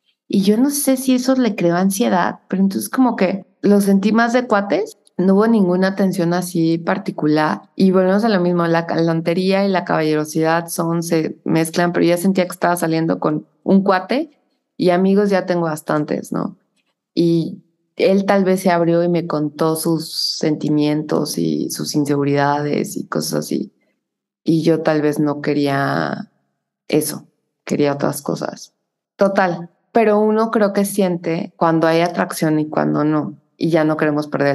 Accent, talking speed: Mexican, 165 wpm